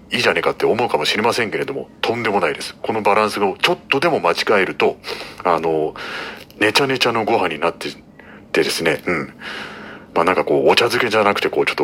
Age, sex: 40-59, male